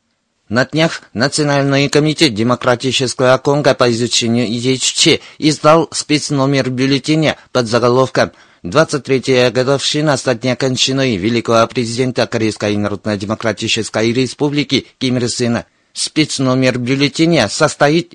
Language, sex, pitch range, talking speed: Russian, male, 120-145 Hz, 95 wpm